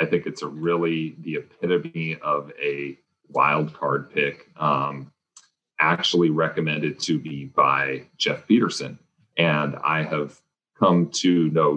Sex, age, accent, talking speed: male, 40-59, American, 135 wpm